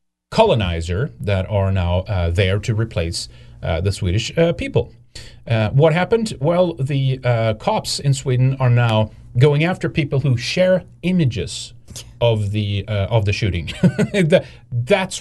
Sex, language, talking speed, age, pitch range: male, English, 145 wpm, 30-49, 105-135 Hz